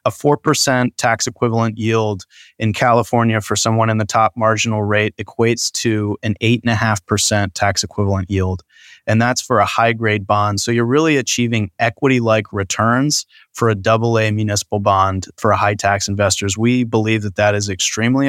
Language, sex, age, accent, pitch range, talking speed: English, male, 20-39, American, 105-120 Hz, 155 wpm